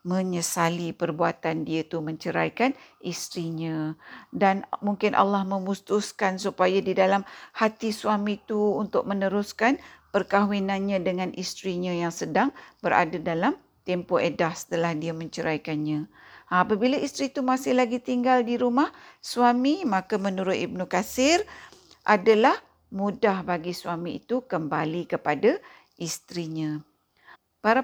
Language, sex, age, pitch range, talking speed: Malay, female, 50-69, 175-225 Hz, 115 wpm